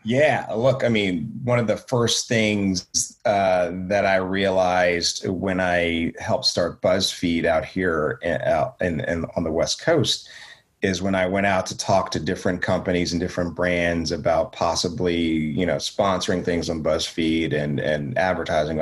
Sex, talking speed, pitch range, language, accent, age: male, 165 wpm, 85-105 Hz, English, American, 30-49